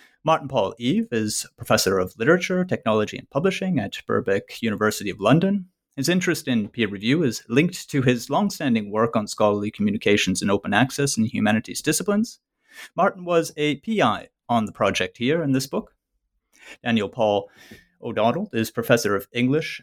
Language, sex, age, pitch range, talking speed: English, male, 30-49, 115-175 Hz, 160 wpm